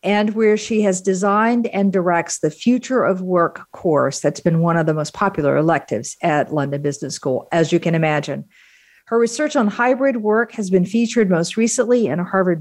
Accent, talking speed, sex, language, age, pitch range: American, 195 wpm, female, English, 50-69, 165-210 Hz